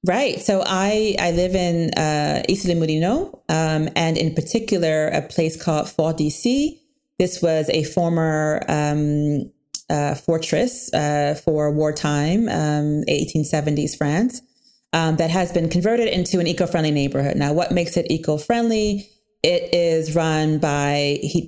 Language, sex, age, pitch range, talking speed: English, female, 30-49, 145-180 Hz, 140 wpm